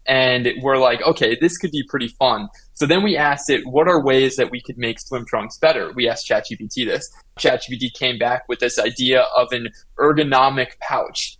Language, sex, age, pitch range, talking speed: English, male, 20-39, 125-150 Hz, 200 wpm